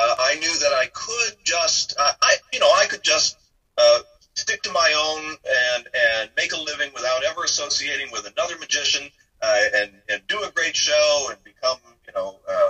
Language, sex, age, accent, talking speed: English, male, 40-59, American, 200 wpm